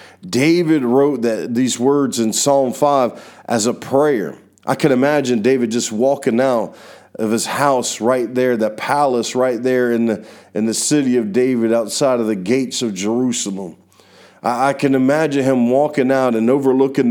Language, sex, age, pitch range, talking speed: English, male, 40-59, 115-140 Hz, 170 wpm